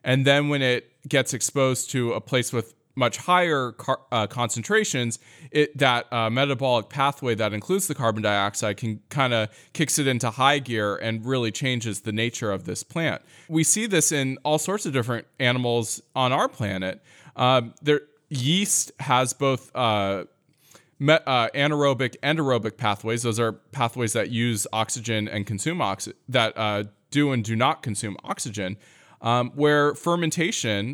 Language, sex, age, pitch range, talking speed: English, male, 20-39, 110-140 Hz, 165 wpm